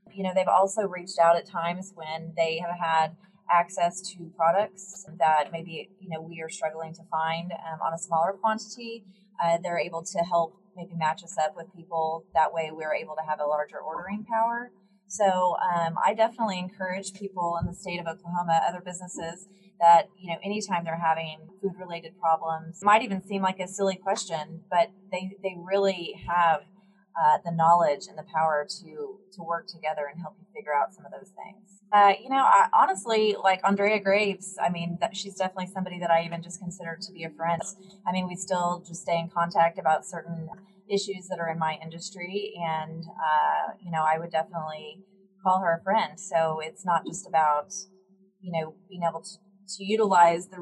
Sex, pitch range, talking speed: female, 165-195 Hz, 195 wpm